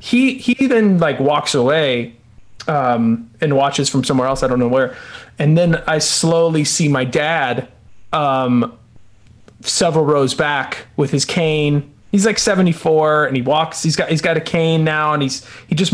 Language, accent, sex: English, American, male